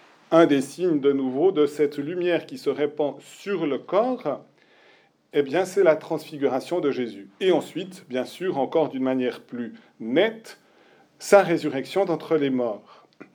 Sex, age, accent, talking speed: male, 40-59, French, 155 wpm